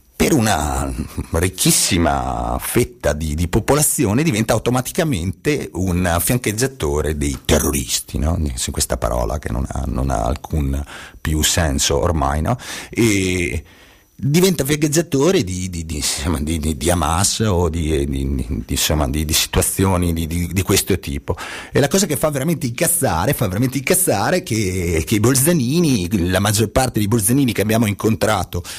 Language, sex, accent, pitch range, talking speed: Italian, male, native, 80-115 Hz, 150 wpm